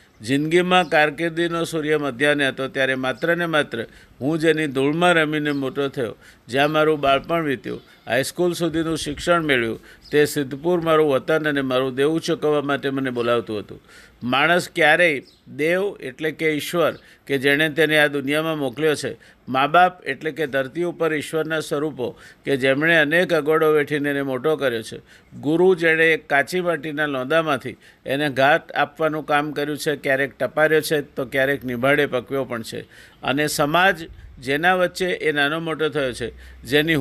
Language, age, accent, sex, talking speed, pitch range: Gujarati, 50-69, native, male, 145 wpm, 140-165 Hz